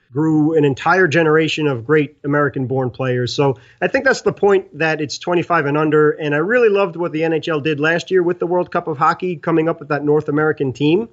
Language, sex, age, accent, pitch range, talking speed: English, male, 30-49, American, 140-185 Hz, 225 wpm